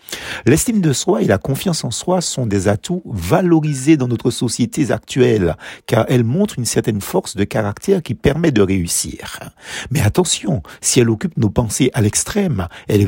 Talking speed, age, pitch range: 175 wpm, 50-69, 105-145 Hz